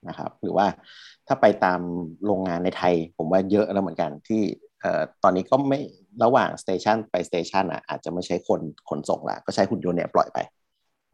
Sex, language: male, Thai